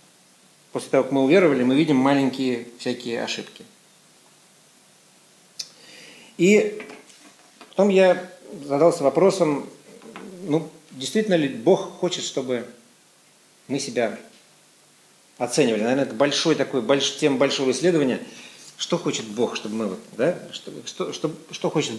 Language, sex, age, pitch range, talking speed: Russian, male, 50-69, 125-180 Hz, 100 wpm